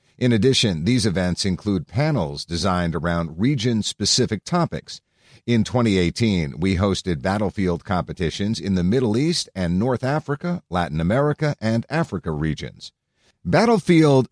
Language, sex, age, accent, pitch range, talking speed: English, male, 50-69, American, 90-135 Hz, 120 wpm